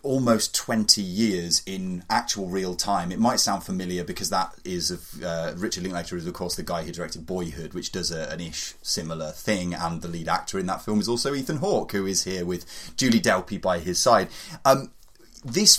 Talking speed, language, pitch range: 210 wpm, English, 85-110 Hz